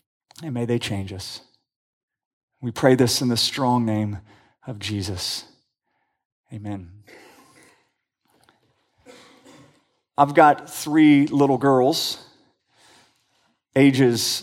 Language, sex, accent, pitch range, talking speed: English, male, American, 125-175 Hz, 85 wpm